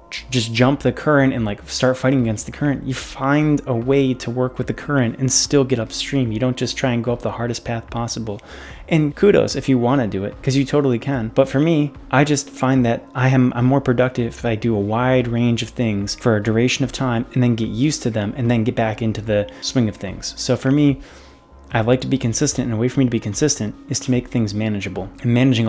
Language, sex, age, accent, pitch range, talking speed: English, male, 20-39, American, 115-135 Hz, 250 wpm